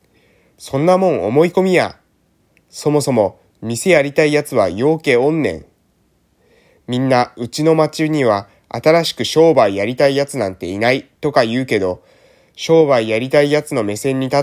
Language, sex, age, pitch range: Japanese, male, 20-39, 115-155 Hz